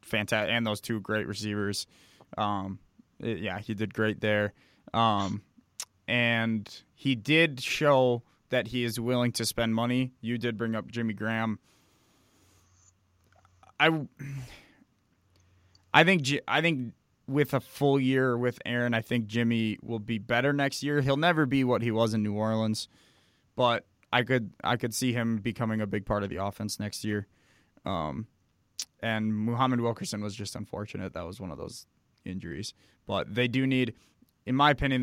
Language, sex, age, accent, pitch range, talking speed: English, male, 20-39, American, 105-120 Hz, 160 wpm